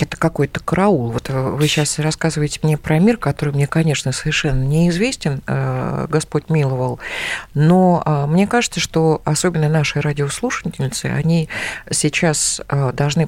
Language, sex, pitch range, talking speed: Russian, female, 150-190 Hz, 115 wpm